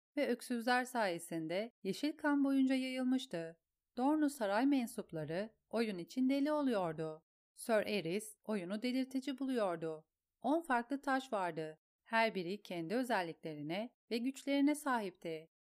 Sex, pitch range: female, 175-260 Hz